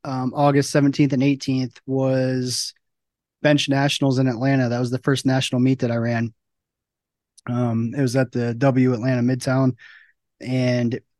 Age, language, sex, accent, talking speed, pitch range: 20-39, English, male, American, 150 wpm, 125-145 Hz